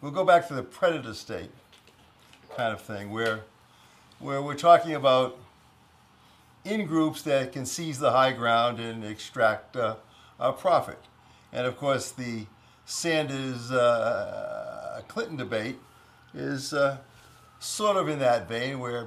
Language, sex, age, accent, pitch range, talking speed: English, male, 60-79, American, 115-150 Hz, 140 wpm